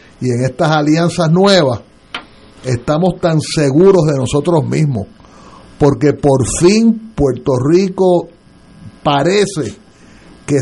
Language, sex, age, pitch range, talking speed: Spanish, male, 60-79, 130-175 Hz, 100 wpm